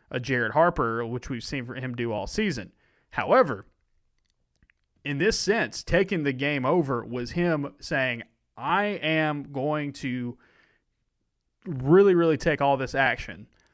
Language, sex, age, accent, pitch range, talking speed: English, male, 30-49, American, 125-155 Hz, 140 wpm